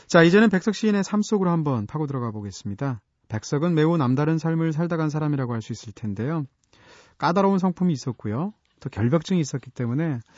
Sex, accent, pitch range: male, native, 115-170 Hz